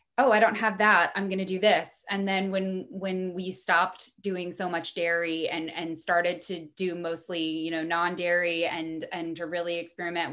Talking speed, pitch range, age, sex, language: 205 wpm, 170-215 Hz, 10-29, female, English